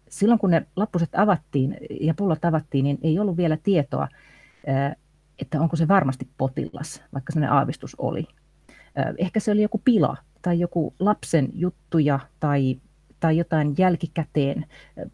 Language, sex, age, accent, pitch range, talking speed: Finnish, female, 40-59, native, 140-165 Hz, 140 wpm